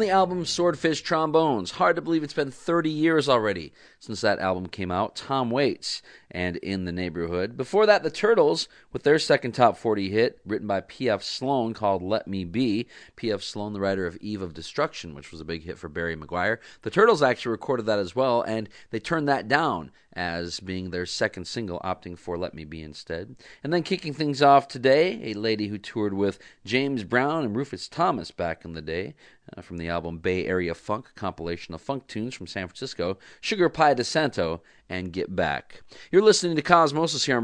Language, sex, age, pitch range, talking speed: English, male, 40-59, 95-140 Hz, 205 wpm